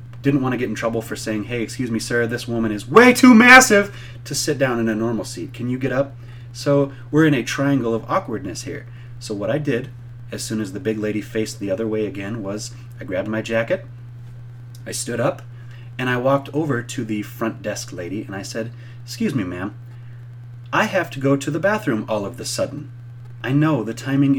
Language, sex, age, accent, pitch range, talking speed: English, male, 30-49, American, 115-135 Hz, 220 wpm